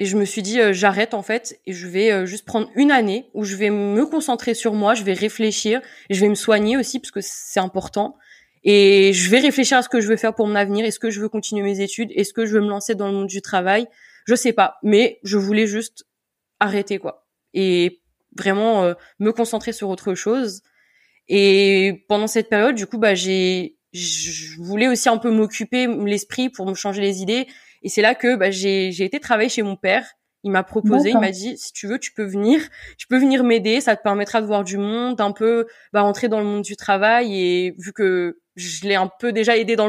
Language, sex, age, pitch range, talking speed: French, female, 20-39, 195-235 Hz, 240 wpm